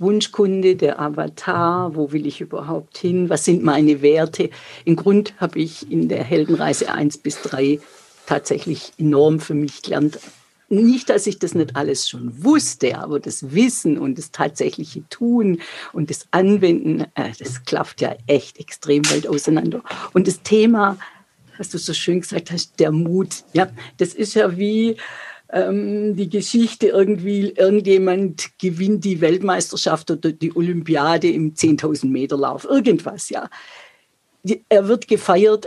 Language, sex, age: German, female, 50-69